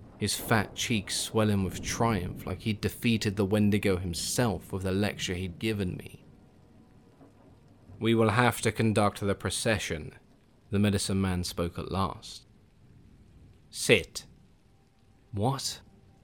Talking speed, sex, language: 120 wpm, male, English